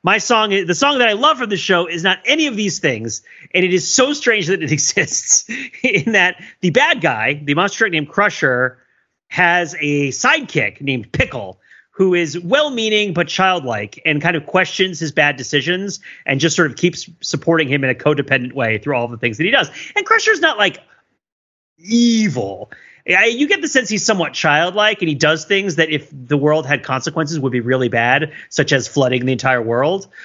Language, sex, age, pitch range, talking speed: English, male, 30-49, 130-190 Hz, 200 wpm